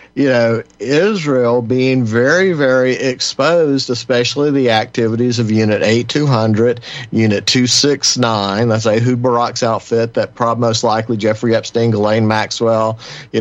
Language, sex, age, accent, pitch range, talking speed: English, male, 50-69, American, 110-125 Hz, 125 wpm